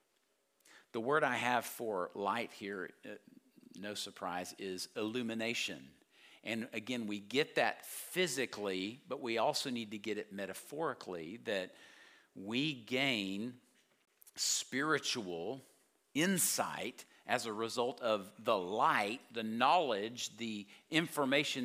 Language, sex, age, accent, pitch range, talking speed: English, male, 50-69, American, 115-170 Hz, 110 wpm